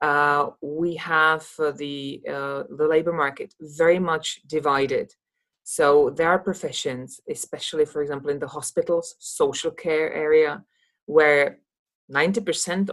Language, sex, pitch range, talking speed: English, female, 145-225 Hz, 125 wpm